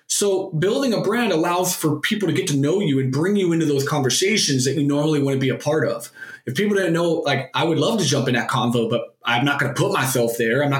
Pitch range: 135-170 Hz